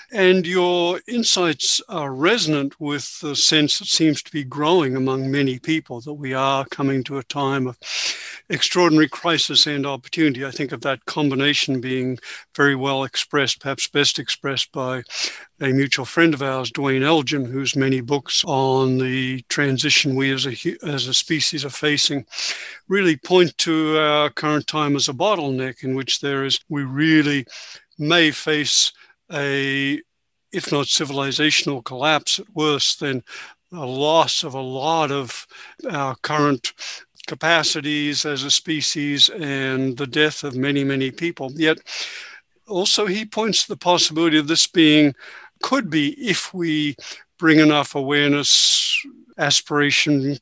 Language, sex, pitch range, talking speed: English, male, 135-160 Hz, 150 wpm